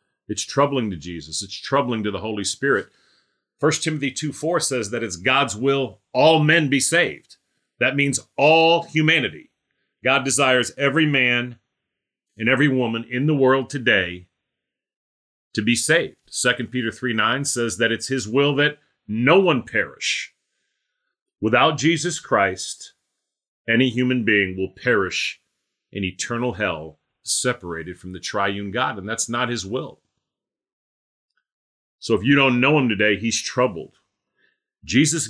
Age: 40-59